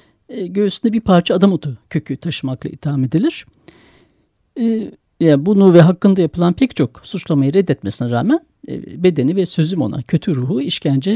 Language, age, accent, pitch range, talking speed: Turkish, 60-79, native, 155-225 Hz, 130 wpm